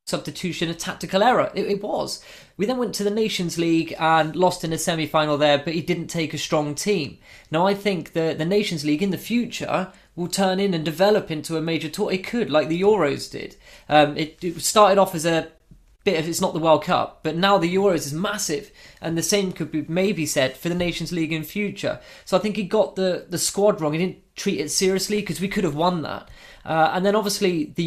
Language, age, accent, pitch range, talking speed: English, 20-39, British, 155-190 Hz, 235 wpm